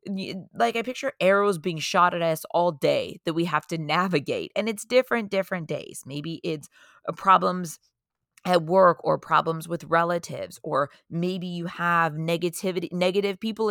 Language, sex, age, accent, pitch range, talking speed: English, female, 30-49, American, 160-200 Hz, 160 wpm